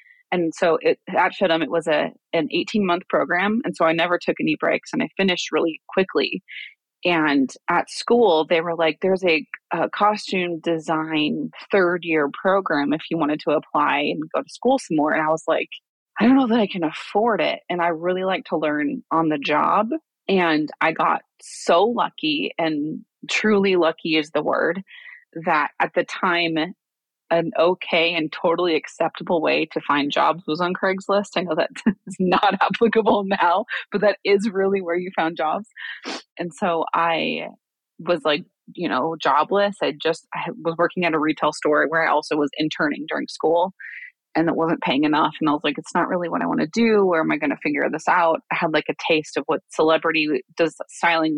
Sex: female